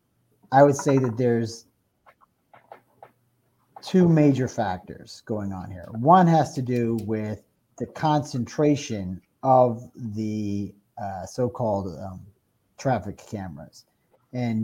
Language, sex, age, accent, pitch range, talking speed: English, male, 50-69, American, 115-145 Hz, 105 wpm